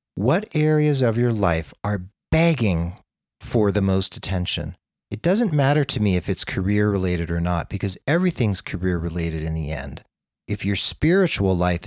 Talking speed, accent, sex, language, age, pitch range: 165 wpm, American, male, English, 40-59, 90-115 Hz